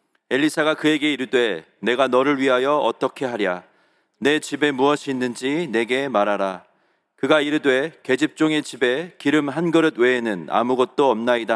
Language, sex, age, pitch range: Korean, male, 40-59, 125-155 Hz